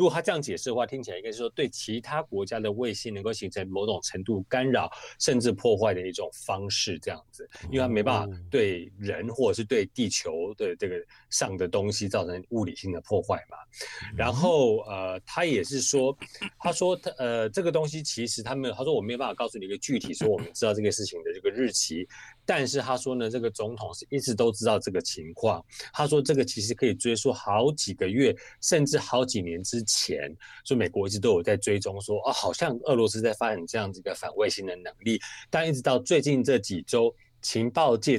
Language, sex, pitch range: Chinese, male, 105-145 Hz